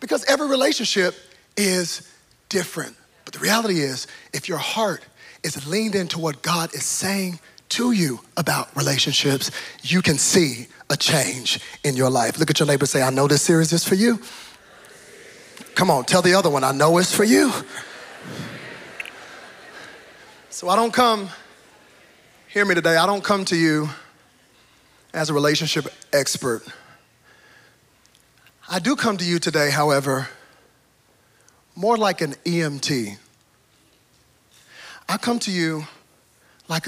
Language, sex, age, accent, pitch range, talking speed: English, male, 40-59, American, 135-185 Hz, 140 wpm